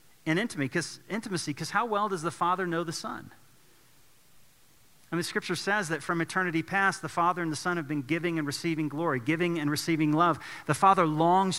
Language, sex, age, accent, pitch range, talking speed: English, male, 40-59, American, 140-170 Hz, 195 wpm